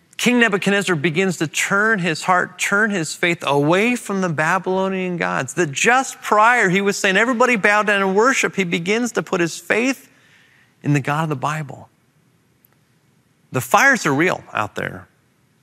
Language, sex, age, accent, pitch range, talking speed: English, male, 30-49, American, 145-195 Hz, 170 wpm